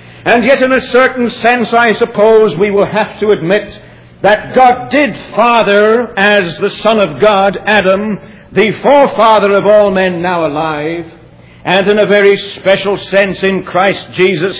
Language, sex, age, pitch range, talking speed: English, male, 60-79, 175-220 Hz, 160 wpm